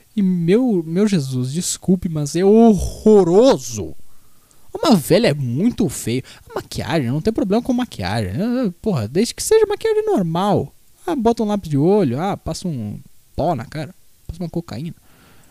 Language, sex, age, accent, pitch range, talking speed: Portuguese, male, 20-39, Brazilian, 165-230 Hz, 155 wpm